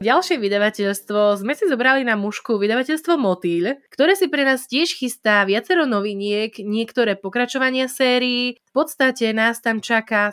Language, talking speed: Slovak, 145 wpm